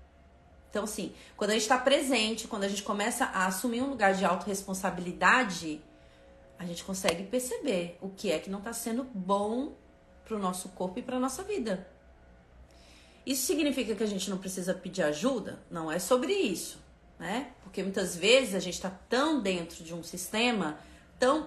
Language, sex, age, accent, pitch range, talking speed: Portuguese, female, 30-49, Brazilian, 180-245 Hz, 180 wpm